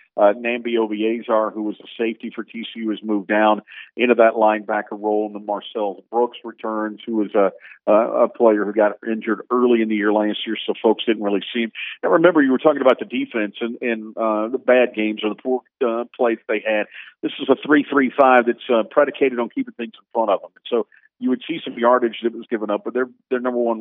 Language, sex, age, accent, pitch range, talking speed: English, male, 50-69, American, 105-125 Hz, 235 wpm